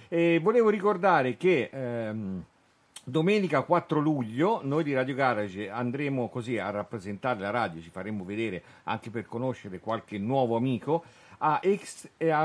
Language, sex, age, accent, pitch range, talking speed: Italian, male, 50-69, native, 110-150 Hz, 135 wpm